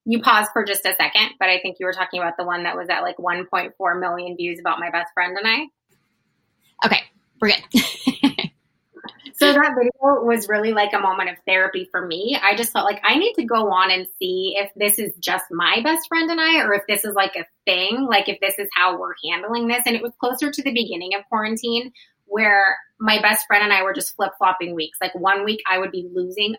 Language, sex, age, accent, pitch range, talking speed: English, female, 20-39, American, 195-265 Hz, 235 wpm